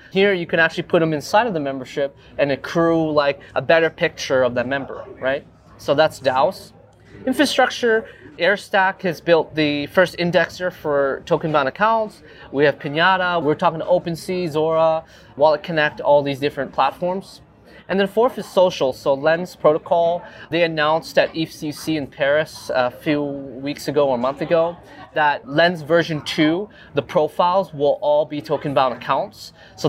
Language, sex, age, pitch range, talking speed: English, male, 20-39, 140-180 Hz, 165 wpm